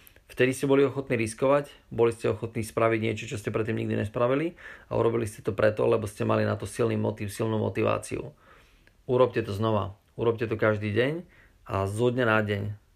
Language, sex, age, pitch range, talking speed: Slovak, male, 30-49, 105-115 Hz, 185 wpm